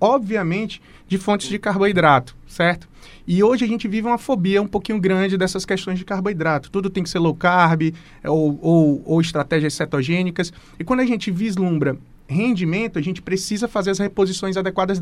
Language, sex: Portuguese, male